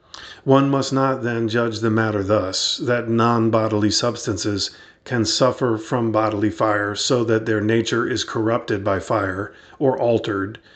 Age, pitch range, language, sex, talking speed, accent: 40-59, 105-120 Hz, English, male, 145 wpm, American